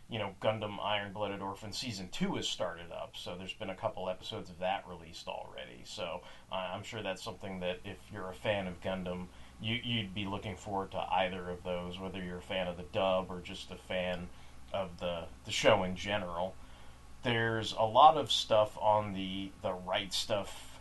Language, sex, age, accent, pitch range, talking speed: English, male, 30-49, American, 90-110 Hz, 200 wpm